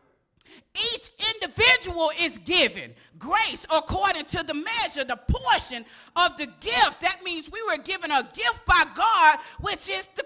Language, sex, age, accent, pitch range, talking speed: English, female, 40-59, American, 310-440 Hz, 150 wpm